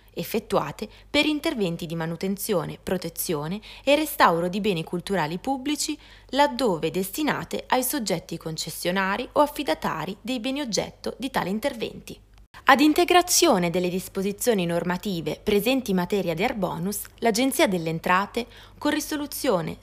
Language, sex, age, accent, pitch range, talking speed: Italian, female, 20-39, native, 175-260 Hz, 120 wpm